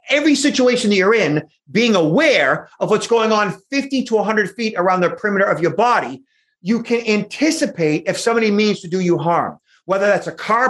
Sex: male